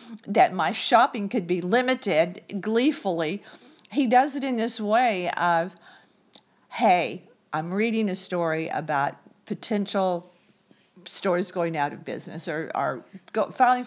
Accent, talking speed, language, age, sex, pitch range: American, 130 wpm, English, 50-69, female, 175-235 Hz